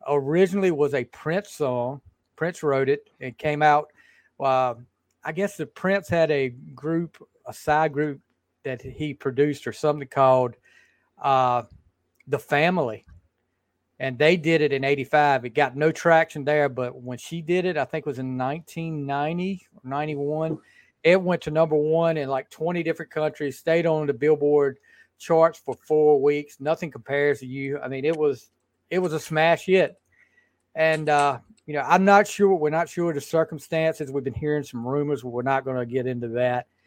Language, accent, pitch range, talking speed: English, American, 130-160 Hz, 180 wpm